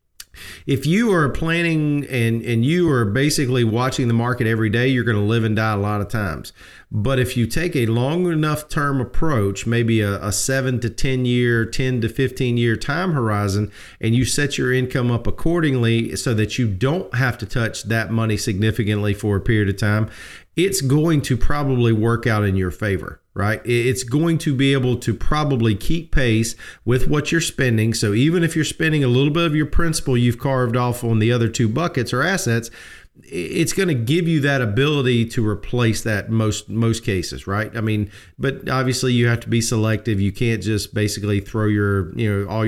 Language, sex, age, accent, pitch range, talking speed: English, male, 40-59, American, 105-135 Hz, 200 wpm